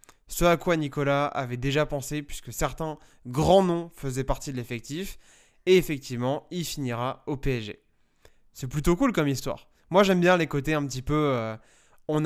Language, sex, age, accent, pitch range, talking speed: French, male, 20-39, French, 135-165 Hz, 170 wpm